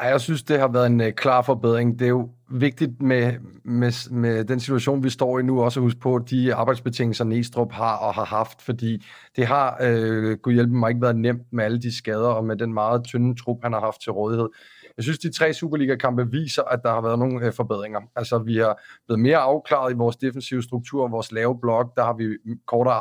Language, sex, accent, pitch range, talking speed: Danish, male, native, 115-130 Hz, 220 wpm